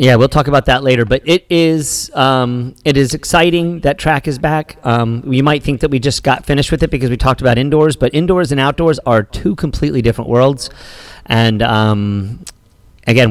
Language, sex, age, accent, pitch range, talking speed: English, male, 40-59, American, 120-155 Hz, 205 wpm